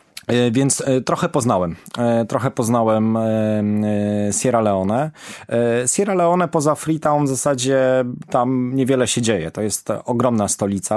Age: 20-39